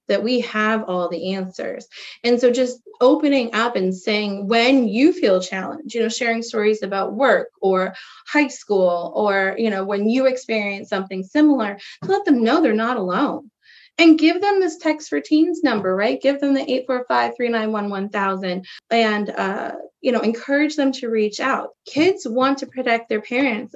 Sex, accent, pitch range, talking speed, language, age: female, American, 200-255 Hz, 175 wpm, English, 20-39